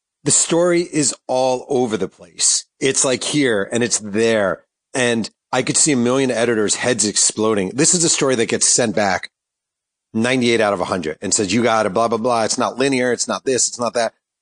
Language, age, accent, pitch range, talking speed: English, 40-59, American, 100-125 Hz, 210 wpm